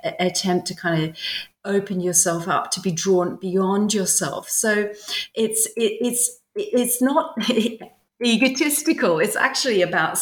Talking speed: 125 wpm